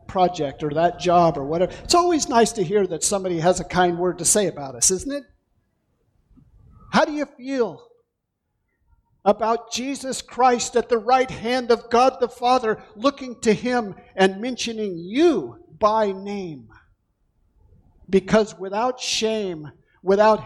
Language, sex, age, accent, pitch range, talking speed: English, male, 50-69, American, 155-220 Hz, 145 wpm